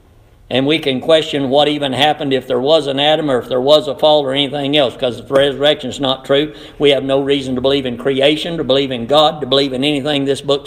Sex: male